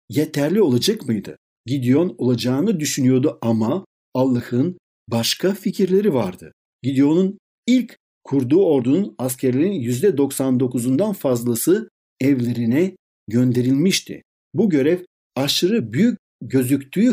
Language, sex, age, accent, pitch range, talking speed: Turkish, male, 60-79, native, 120-170 Hz, 90 wpm